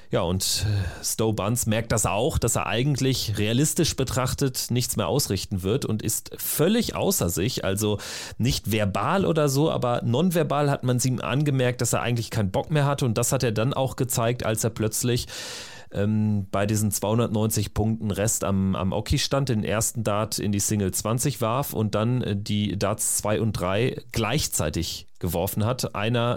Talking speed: 175 wpm